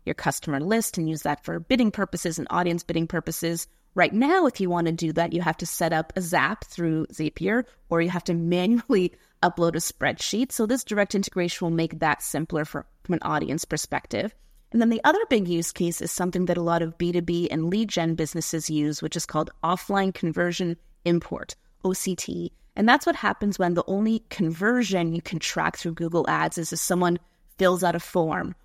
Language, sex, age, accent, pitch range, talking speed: English, female, 30-49, American, 165-195 Hz, 205 wpm